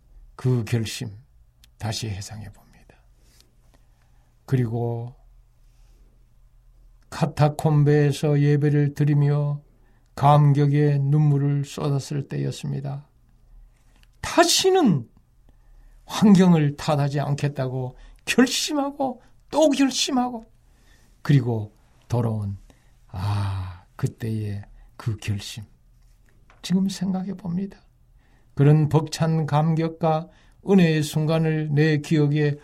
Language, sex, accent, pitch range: Korean, male, native, 115-165 Hz